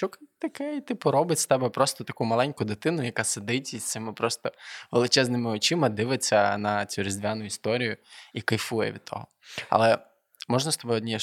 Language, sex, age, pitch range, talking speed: Ukrainian, male, 20-39, 105-120 Hz, 170 wpm